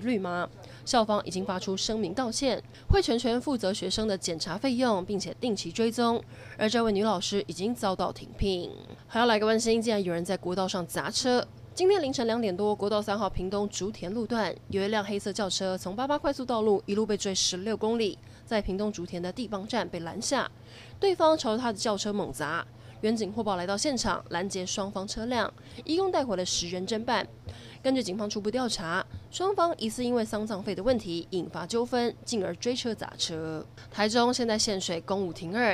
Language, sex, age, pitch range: Chinese, female, 20-39, 185-230 Hz